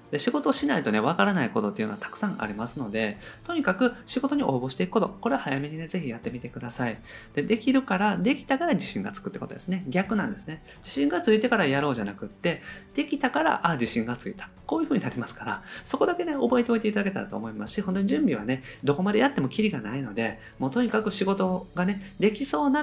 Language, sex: Japanese, male